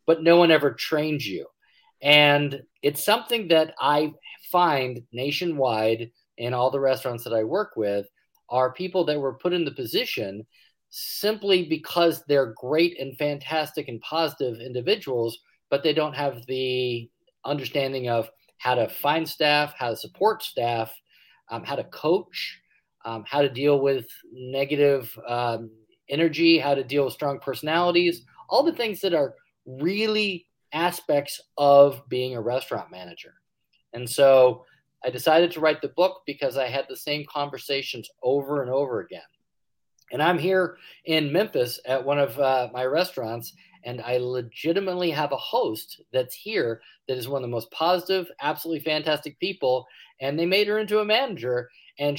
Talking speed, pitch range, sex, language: 160 wpm, 130-170 Hz, male, English